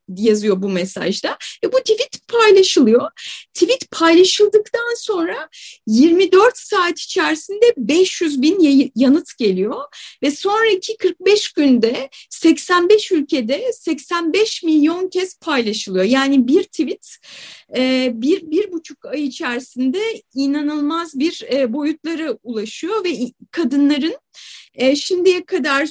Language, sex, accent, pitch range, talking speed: Turkish, female, native, 270-365 Hz, 100 wpm